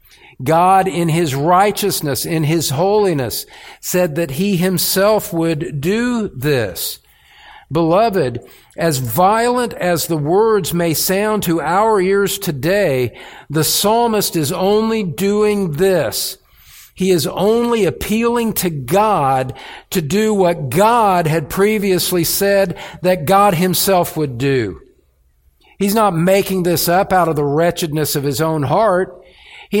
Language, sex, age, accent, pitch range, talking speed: English, male, 50-69, American, 150-195 Hz, 130 wpm